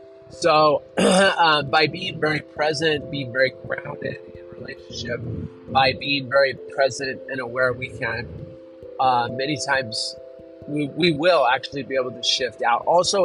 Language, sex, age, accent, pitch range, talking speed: English, male, 30-49, American, 120-150 Hz, 145 wpm